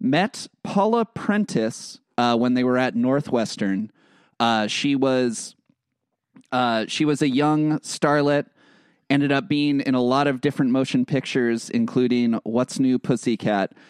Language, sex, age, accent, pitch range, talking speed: English, male, 30-49, American, 110-140 Hz, 140 wpm